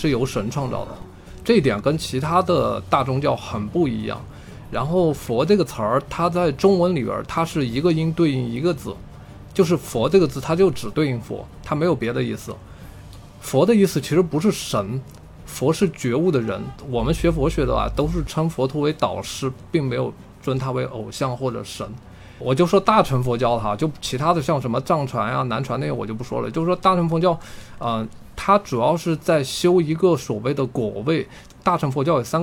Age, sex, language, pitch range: 20-39, male, Chinese, 120-175 Hz